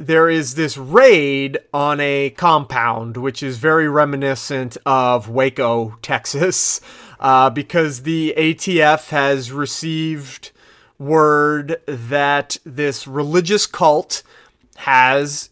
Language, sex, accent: English, male, American